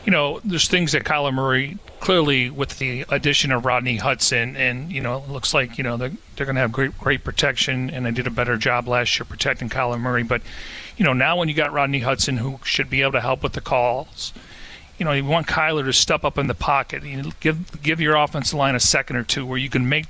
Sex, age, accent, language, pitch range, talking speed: male, 40-59, American, English, 125-145 Hz, 245 wpm